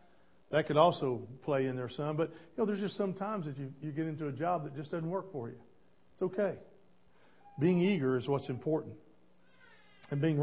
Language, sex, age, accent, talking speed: English, male, 50-69, American, 205 wpm